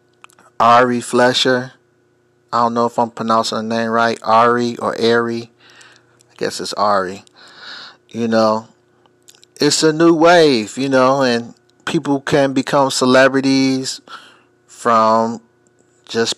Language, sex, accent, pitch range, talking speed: English, male, American, 120-140 Hz, 120 wpm